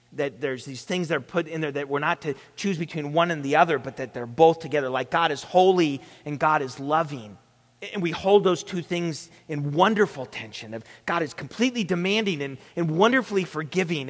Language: English